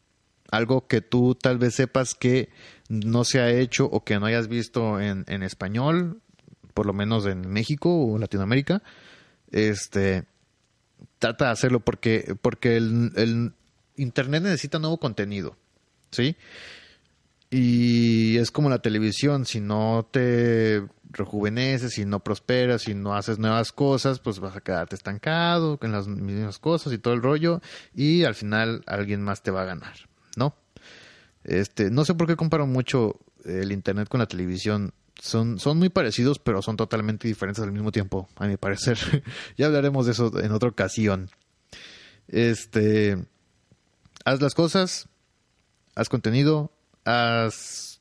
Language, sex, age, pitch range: Spanish, male, 30-49, 105-130 Hz